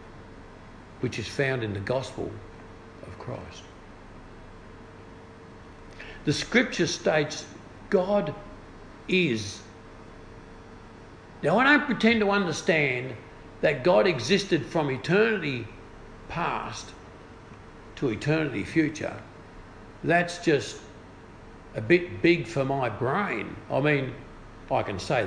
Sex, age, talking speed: male, 60-79, 95 wpm